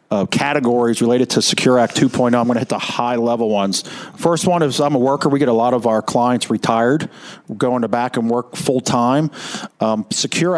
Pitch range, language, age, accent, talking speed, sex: 110-135 Hz, English, 50-69, American, 205 wpm, male